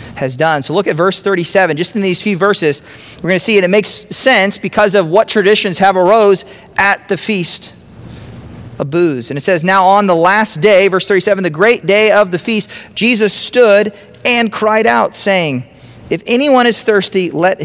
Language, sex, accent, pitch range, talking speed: English, male, American, 145-205 Hz, 195 wpm